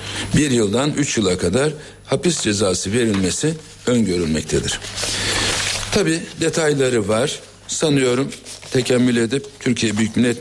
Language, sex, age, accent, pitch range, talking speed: Turkish, male, 60-79, native, 95-125 Hz, 105 wpm